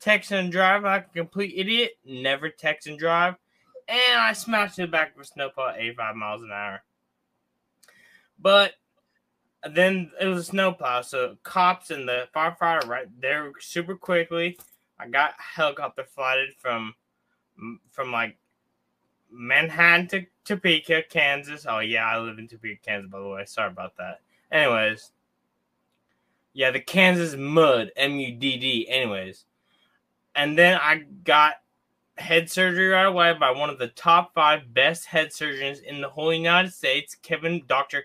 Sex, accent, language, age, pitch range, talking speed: male, American, English, 20-39, 125-175 Hz, 155 wpm